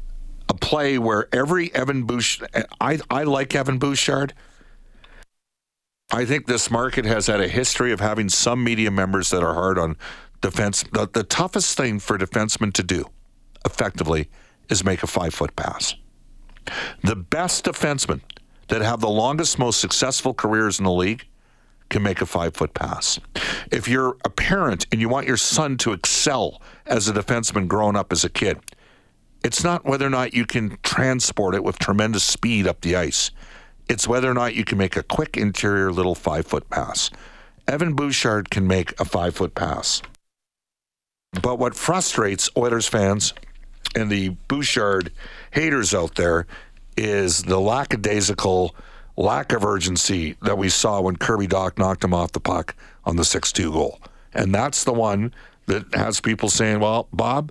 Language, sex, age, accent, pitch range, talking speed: English, male, 50-69, American, 95-125 Hz, 165 wpm